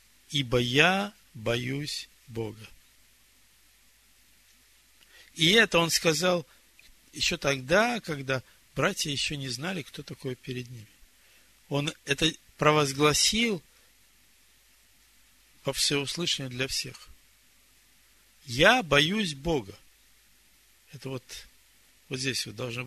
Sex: male